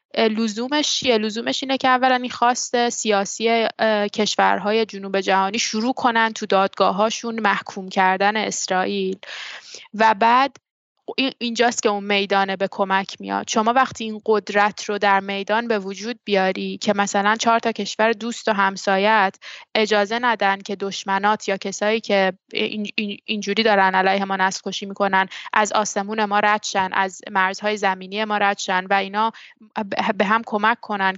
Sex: female